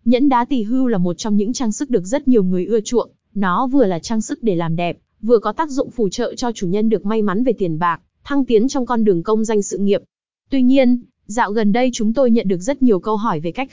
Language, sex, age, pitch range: Vietnamese, female, 20-39, 205-255 Hz